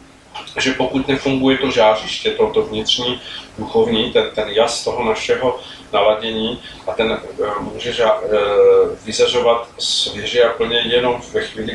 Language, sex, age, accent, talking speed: Czech, male, 40-59, native, 140 wpm